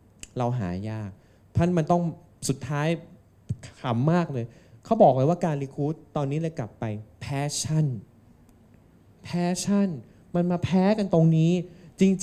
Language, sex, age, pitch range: Thai, male, 20-39, 120-175 Hz